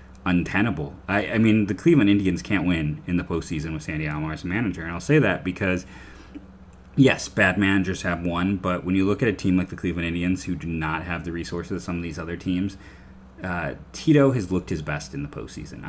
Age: 30-49